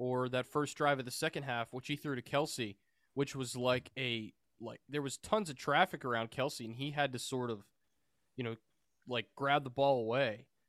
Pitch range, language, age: 115-155 Hz, English, 20-39